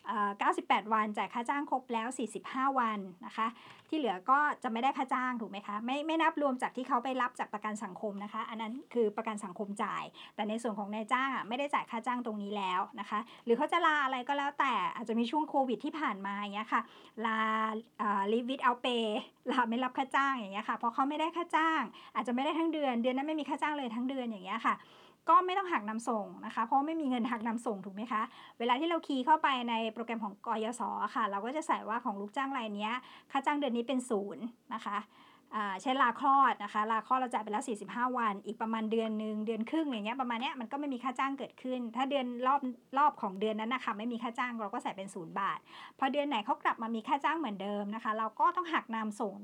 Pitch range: 220-275 Hz